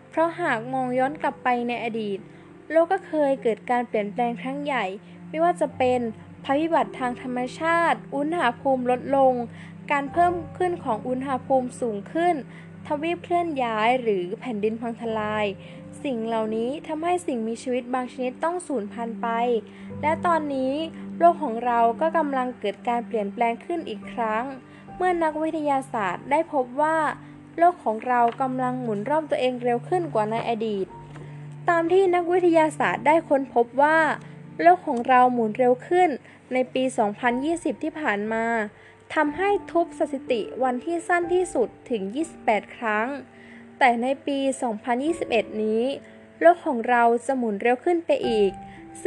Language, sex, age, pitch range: Thai, female, 20-39, 225-310 Hz